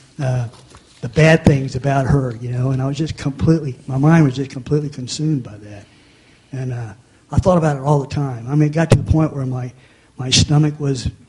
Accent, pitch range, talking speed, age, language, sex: American, 125-145 Hz, 225 wpm, 50-69, English, male